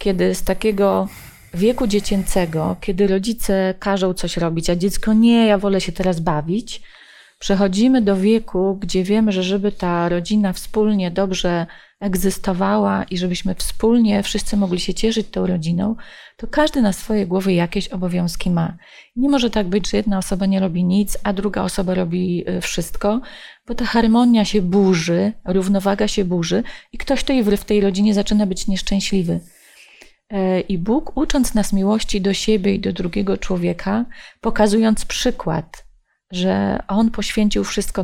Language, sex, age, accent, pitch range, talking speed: Polish, female, 30-49, native, 185-215 Hz, 150 wpm